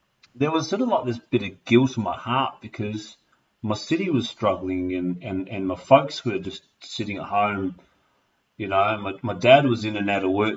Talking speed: 215 wpm